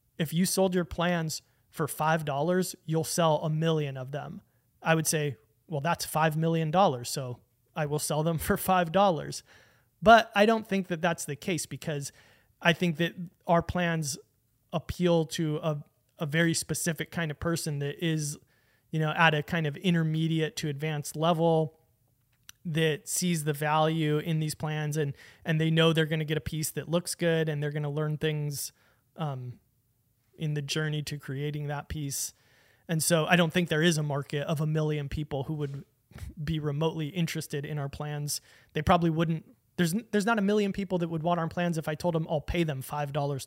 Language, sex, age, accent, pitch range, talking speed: English, male, 30-49, American, 145-170 Hz, 195 wpm